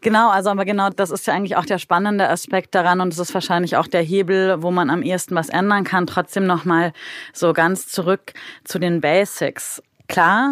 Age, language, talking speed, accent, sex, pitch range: 20-39, German, 205 wpm, German, female, 170-195 Hz